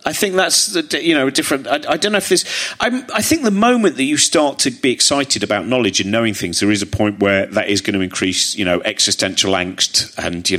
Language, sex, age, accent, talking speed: English, male, 40-59, British, 255 wpm